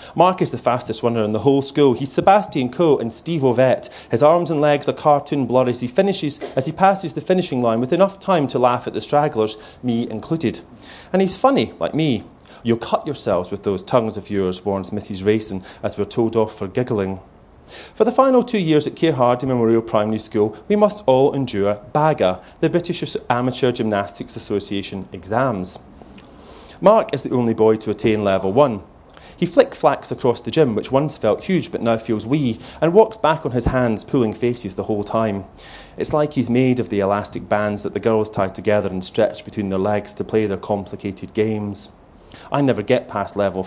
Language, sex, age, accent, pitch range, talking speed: English, male, 30-49, British, 105-145 Hz, 200 wpm